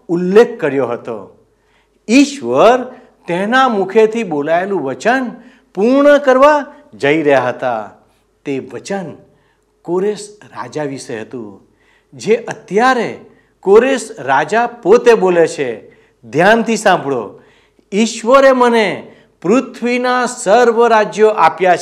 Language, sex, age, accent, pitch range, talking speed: Gujarati, male, 60-79, native, 170-245 Hz, 95 wpm